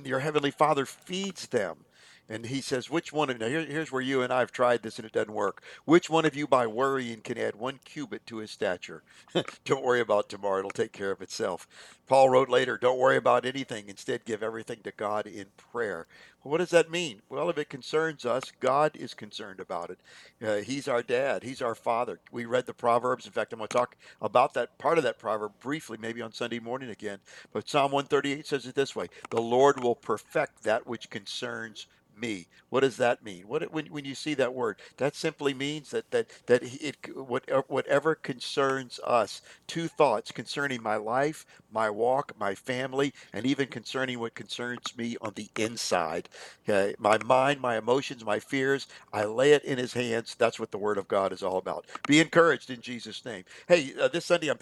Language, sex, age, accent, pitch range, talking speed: English, male, 50-69, American, 115-140 Hz, 210 wpm